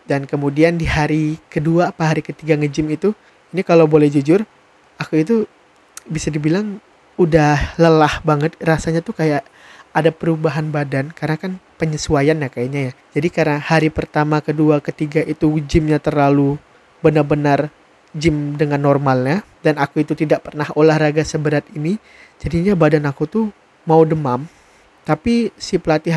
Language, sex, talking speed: Indonesian, male, 145 wpm